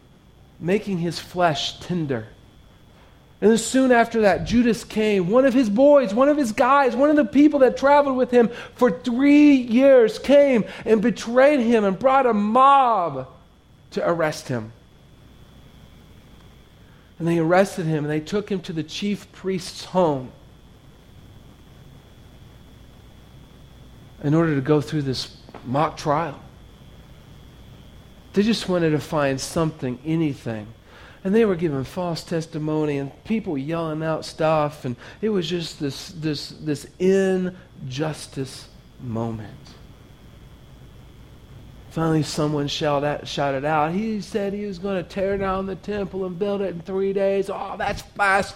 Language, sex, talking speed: English, male, 140 wpm